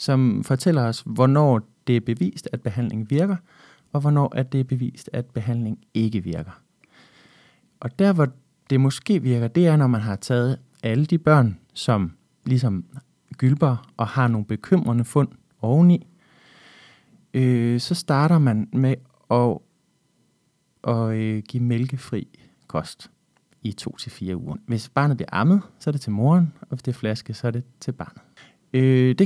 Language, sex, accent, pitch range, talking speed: Danish, male, native, 110-150 Hz, 160 wpm